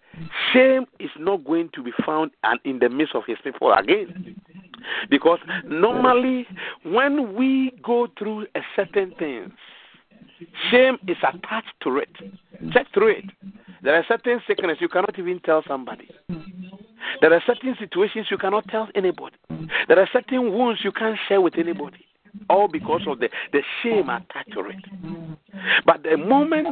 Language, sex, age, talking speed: English, male, 50-69, 155 wpm